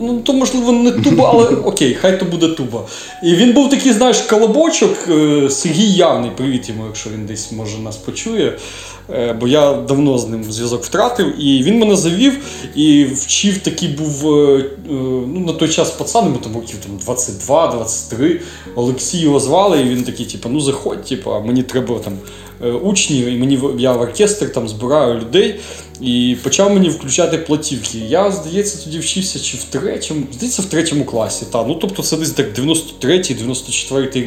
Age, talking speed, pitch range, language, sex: 20-39, 170 wpm, 120-175 Hz, Ukrainian, male